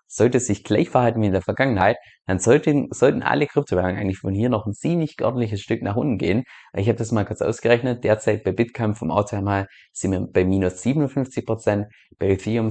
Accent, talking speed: German, 210 wpm